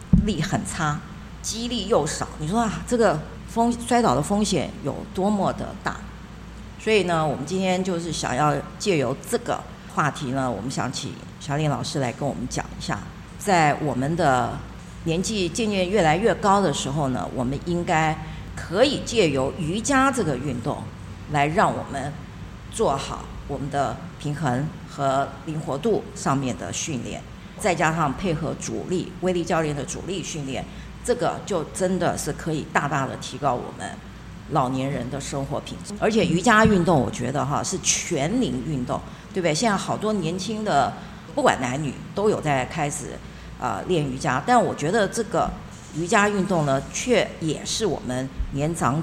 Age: 50-69